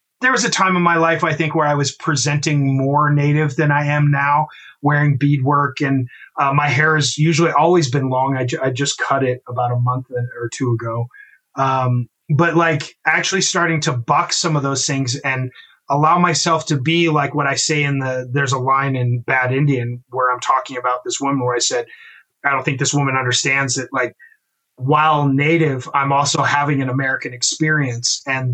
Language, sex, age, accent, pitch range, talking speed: English, male, 30-49, American, 130-155 Hz, 200 wpm